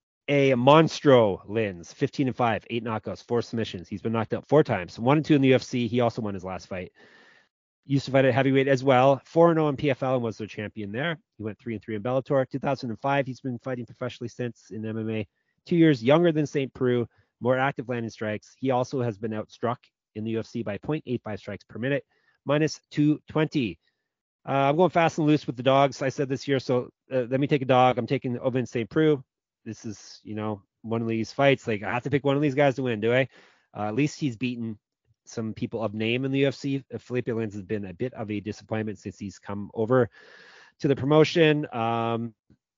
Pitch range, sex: 110-135 Hz, male